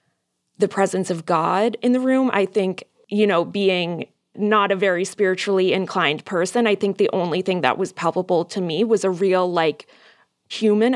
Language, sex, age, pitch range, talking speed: English, female, 20-39, 190-235 Hz, 180 wpm